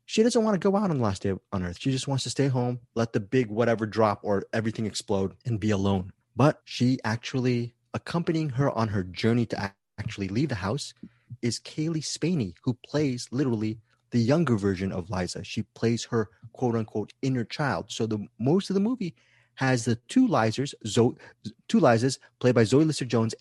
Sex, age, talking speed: male, 30-49, 195 wpm